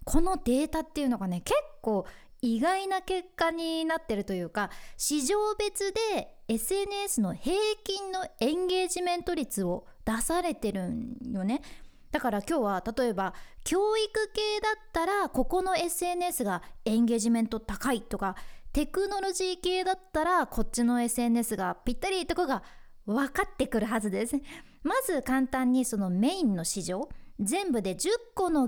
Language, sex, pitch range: Japanese, female, 225-350 Hz